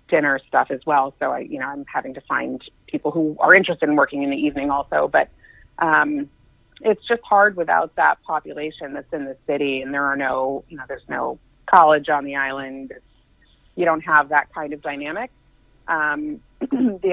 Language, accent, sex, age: English, American, female, 30-49